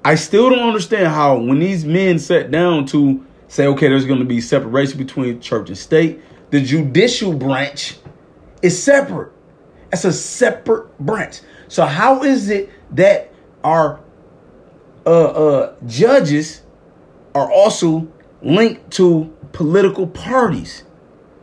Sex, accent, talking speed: male, American, 130 wpm